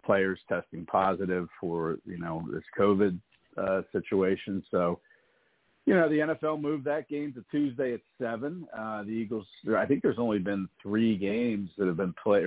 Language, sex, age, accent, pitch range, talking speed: English, male, 50-69, American, 95-115 Hz, 175 wpm